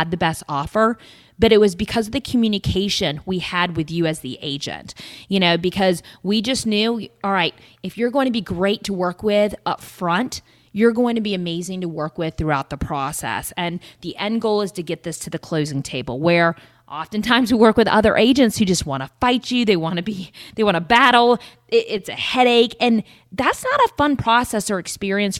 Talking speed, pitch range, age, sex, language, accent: 215 wpm, 165-215 Hz, 20-39, female, English, American